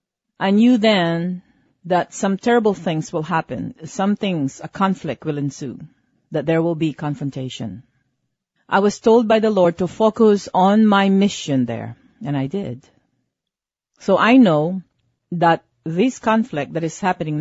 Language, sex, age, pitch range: English, female, 40-59, 145-200 Hz